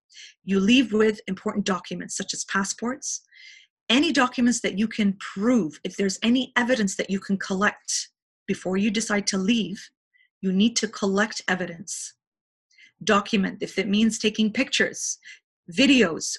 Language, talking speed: English, 145 wpm